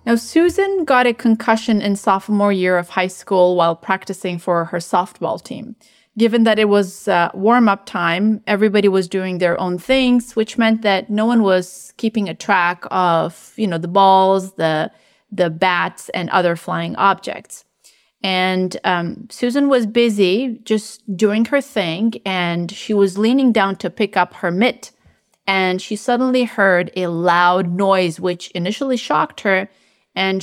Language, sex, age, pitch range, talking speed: English, female, 30-49, 185-230 Hz, 160 wpm